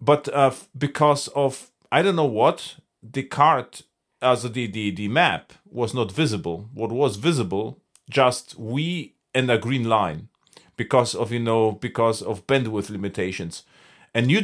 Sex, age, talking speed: male, 40-59, 155 wpm